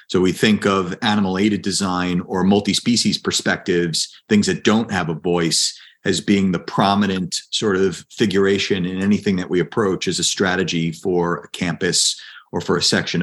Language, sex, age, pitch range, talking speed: English, male, 40-59, 95-115 Hz, 170 wpm